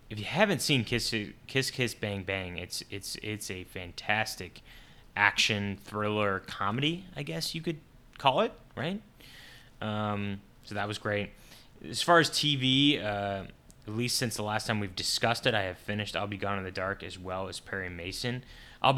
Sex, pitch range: male, 100-120 Hz